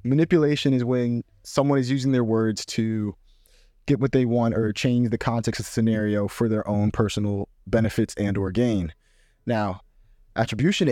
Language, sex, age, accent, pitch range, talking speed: English, male, 20-39, American, 105-125 Hz, 160 wpm